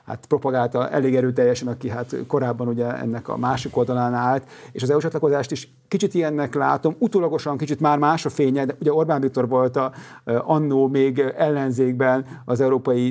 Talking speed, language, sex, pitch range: 170 wpm, Hungarian, male, 125-145 Hz